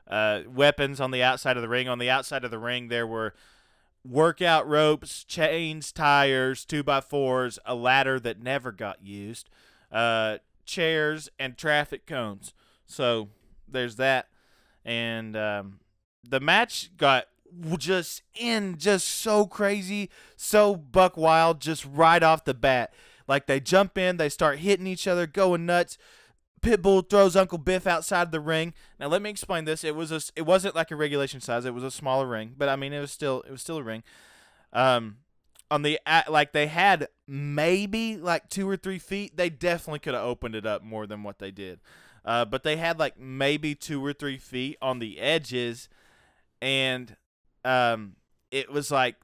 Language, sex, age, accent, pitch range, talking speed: English, male, 20-39, American, 125-165 Hz, 175 wpm